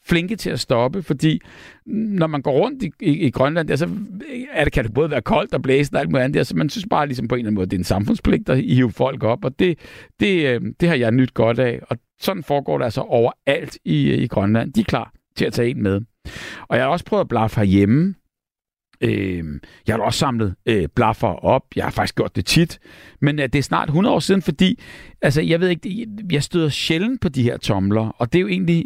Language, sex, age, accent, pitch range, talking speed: Danish, male, 60-79, native, 115-165 Hz, 250 wpm